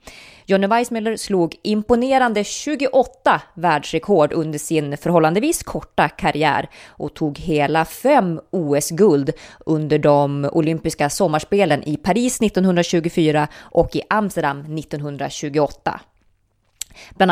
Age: 20-39